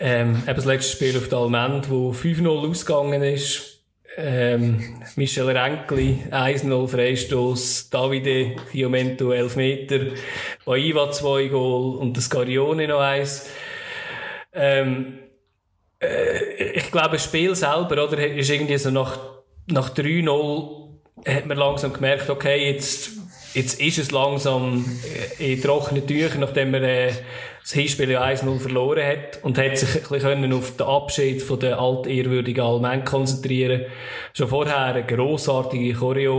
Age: 20-39